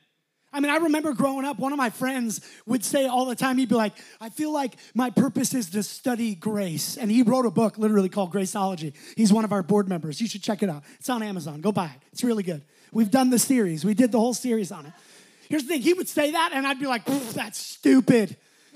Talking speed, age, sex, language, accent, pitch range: 255 wpm, 20-39, male, English, American, 210-285 Hz